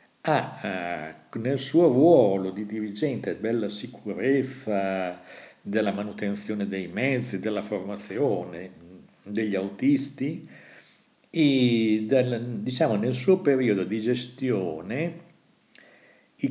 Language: Italian